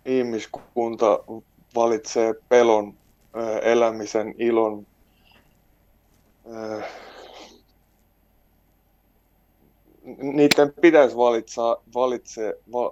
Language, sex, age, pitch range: Finnish, male, 20-39, 110-125 Hz